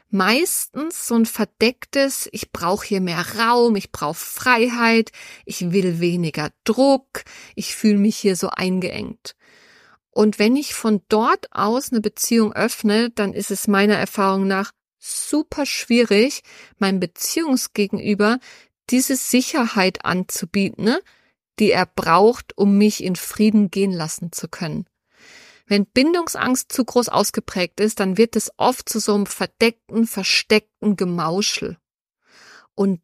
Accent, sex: German, female